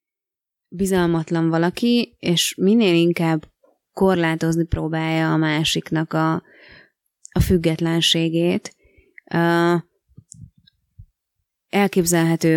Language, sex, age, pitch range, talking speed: Hungarian, female, 20-39, 160-180 Hz, 60 wpm